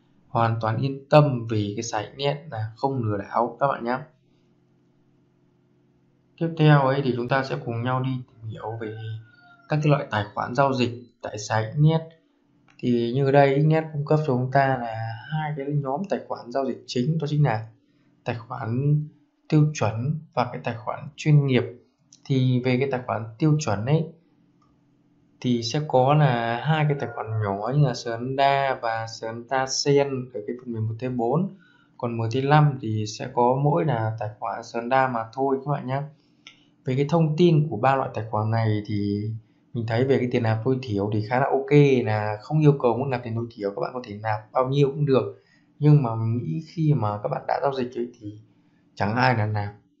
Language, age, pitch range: Vietnamese, 20-39, 115-145 Hz